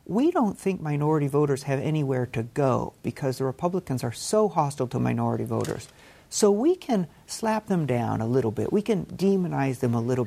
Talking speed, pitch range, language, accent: 195 wpm, 130-180 Hz, English, American